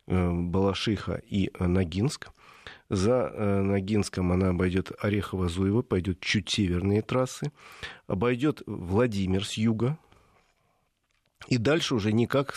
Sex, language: male, Russian